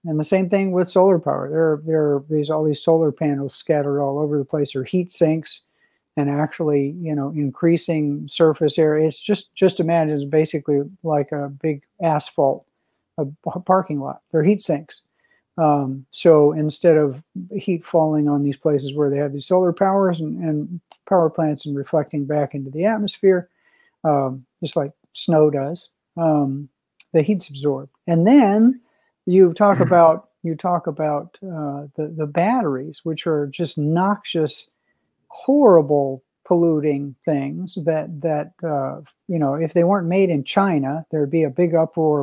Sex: male